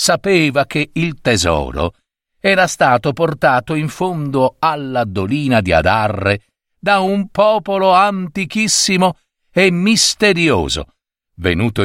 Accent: native